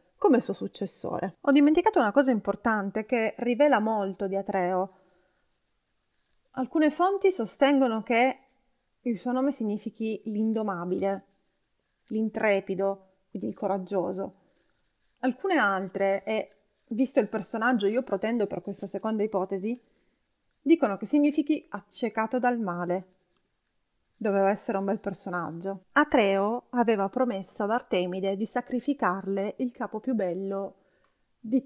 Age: 30-49